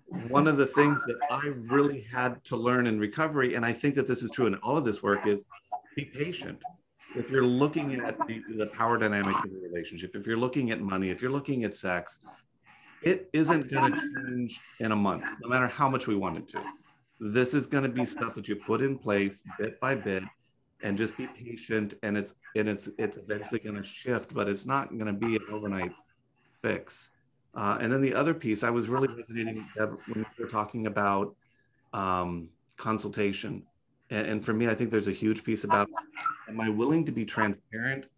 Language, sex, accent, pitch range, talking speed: English, male, American, 105-135 Hz, 205 wpm